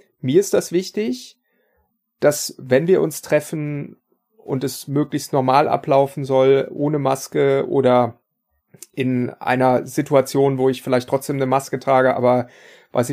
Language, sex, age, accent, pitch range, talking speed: German, male, 30-49, German, 130-155 Hz, 140 wpm